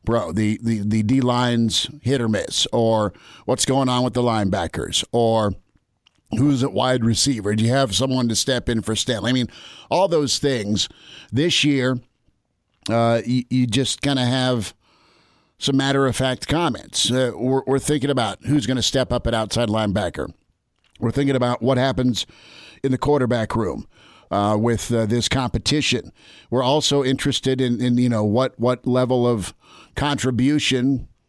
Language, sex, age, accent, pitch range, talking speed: English, male, 50-69, American, 115-135 Hz, 170 wpm